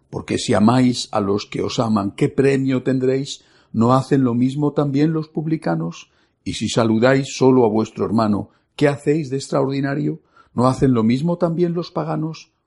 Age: 60-79